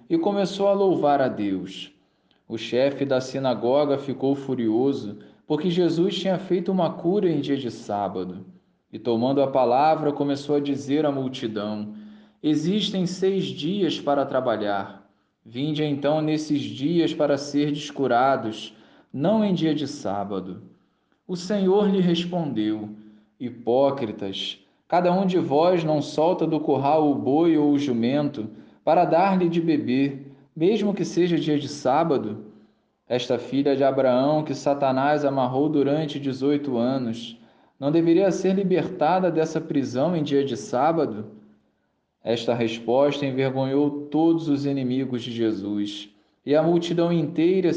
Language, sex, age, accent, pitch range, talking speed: Portuguese, male, 20-39, Brazilian, 120-165 Hz, 140 wpm